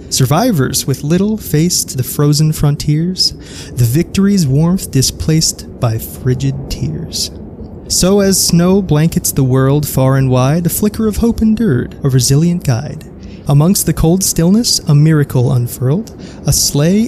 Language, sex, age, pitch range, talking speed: English, male, 20-39, 130-180 Hz, 140 wpm